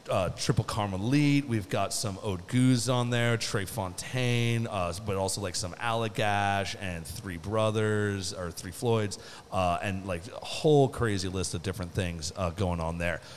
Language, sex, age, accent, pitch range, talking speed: English, male, 30-49, American, 95-130 Hz, 170 wpm